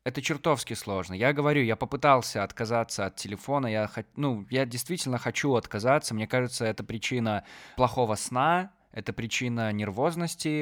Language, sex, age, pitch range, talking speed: Russian, male, 20-39, 105-135 Hz, 135 wpm